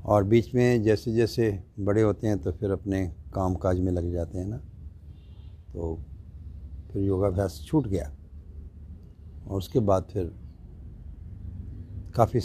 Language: Hindi